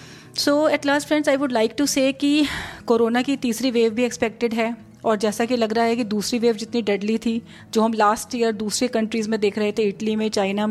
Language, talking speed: Hindi, 230 wpm